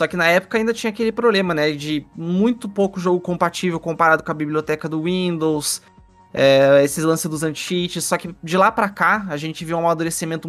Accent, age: Brazilian, 20-39